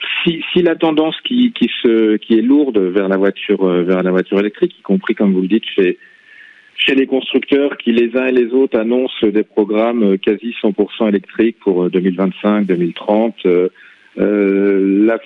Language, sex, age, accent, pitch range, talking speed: French, male, 40-59, French, 105-130 Hz, 175 wpm